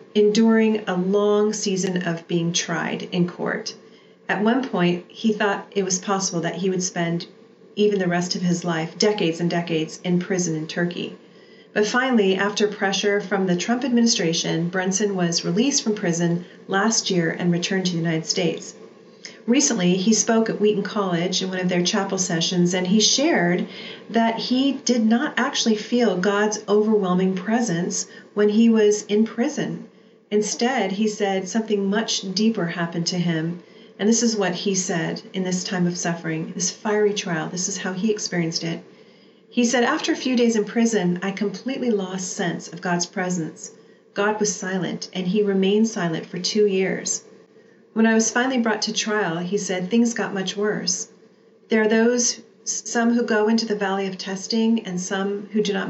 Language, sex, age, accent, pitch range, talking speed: English, female, 40-59, American, 185-220 Hz, 180 wpm